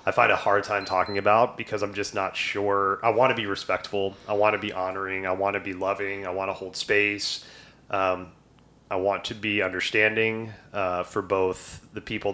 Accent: American